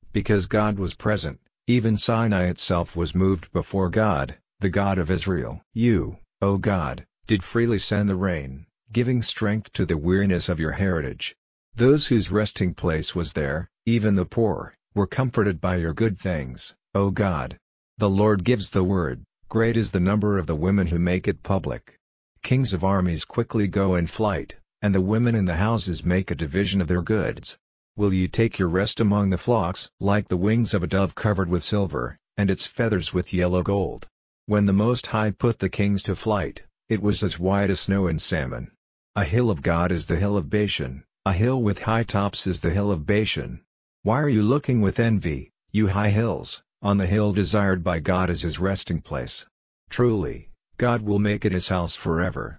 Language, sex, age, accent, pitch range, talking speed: English, male, 50-69, American, 90-105 Hz, 195 wpm